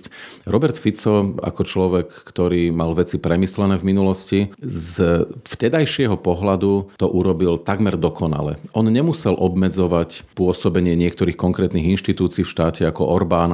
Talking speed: 125 wpm